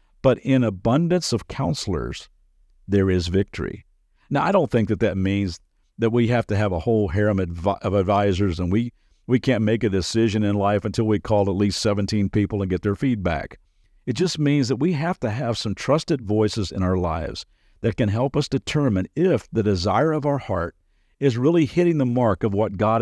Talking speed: 205 wpm